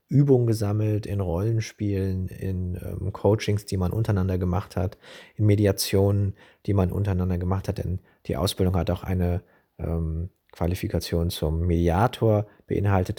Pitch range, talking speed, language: 90-105 Hz, 135 wpm, German